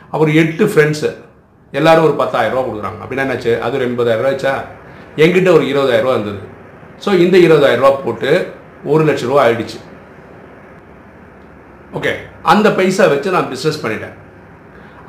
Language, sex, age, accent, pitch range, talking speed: Tamil, male, 50-69, native, 120-165 Hz, 120 wpm